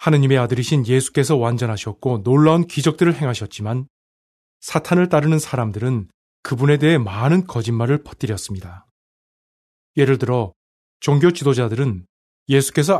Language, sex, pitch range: Korean, male, 110-150 Hz